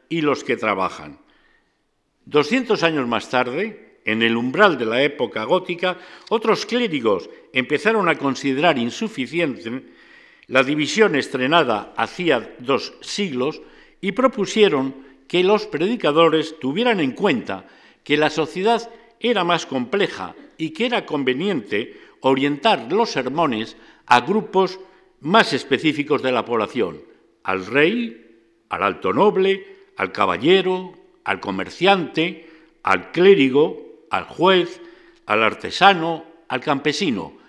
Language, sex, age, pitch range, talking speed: Spanish, male, 50-69, 135-205 Hz, 115 wpm